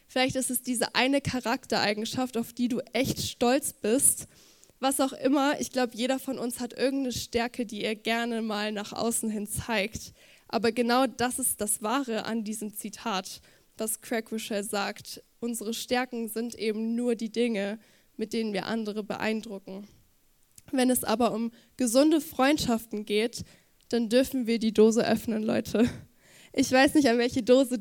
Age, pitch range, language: 10-29, 220-255 Hz, German